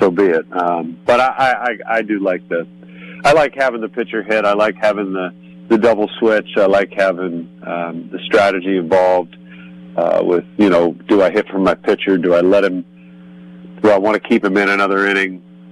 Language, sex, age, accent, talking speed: English, male, 40-59, American, 205 wpm